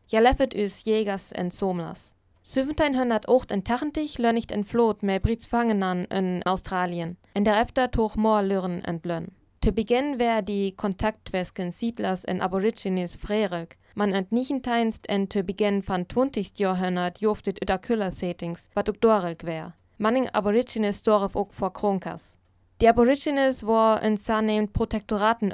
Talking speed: 155 wpm